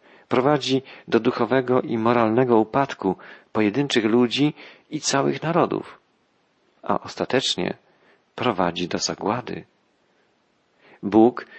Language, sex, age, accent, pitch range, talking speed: Polish, male, 40-59, native, 105-125 Hz, 90 wpm